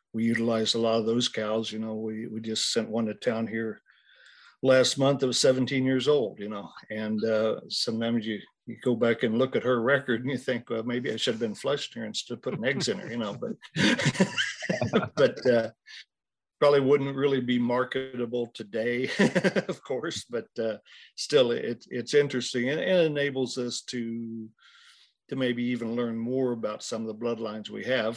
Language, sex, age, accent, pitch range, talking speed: English, male, 60-79, American, 110-130 Hz, 195 wpm